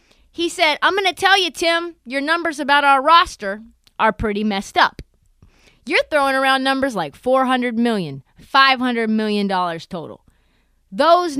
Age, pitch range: 30-49, 195-280 Hz